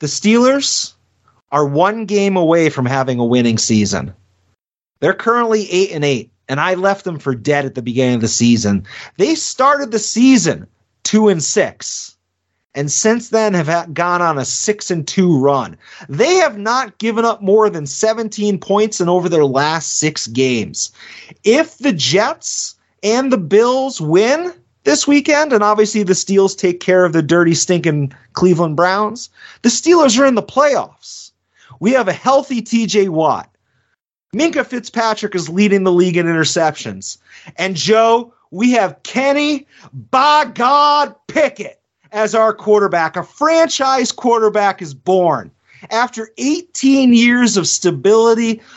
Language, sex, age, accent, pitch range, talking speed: English, male, 30-49, American, 155-235 Hz, 155 wpm